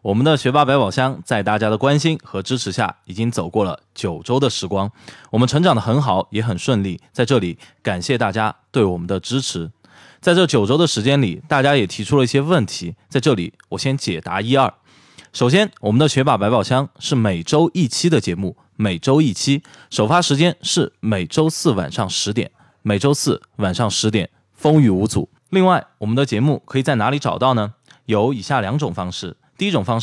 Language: Chinese